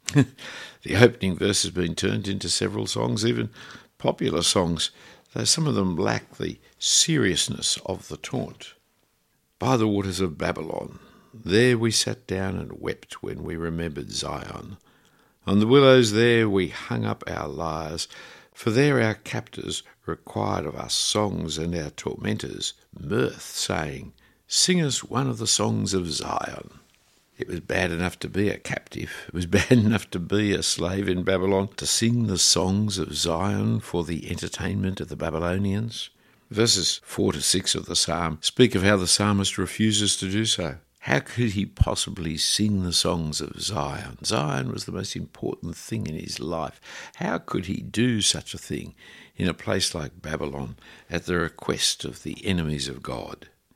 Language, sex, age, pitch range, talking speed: English, male, 60-79, 85-110 Hz, 165 wpm